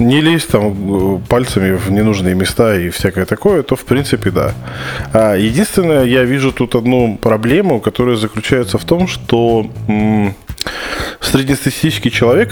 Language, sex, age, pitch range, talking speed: Russian, male, 20-39, 95-120 Hz, 135 wpm